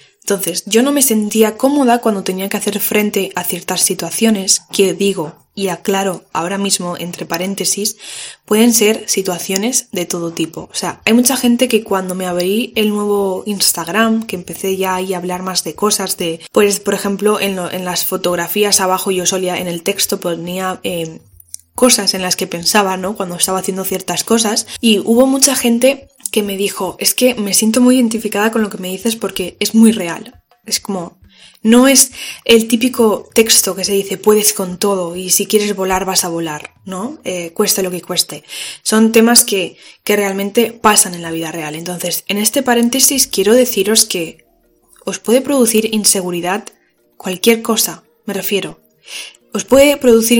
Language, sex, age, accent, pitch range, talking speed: Spanish, female, 10-29, Spanish, 185-225 Hz, 180 wpm